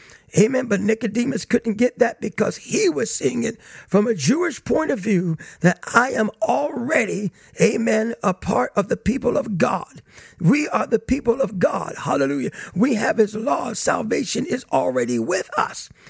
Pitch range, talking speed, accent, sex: 185-230 Hz, 170 wpm, American, male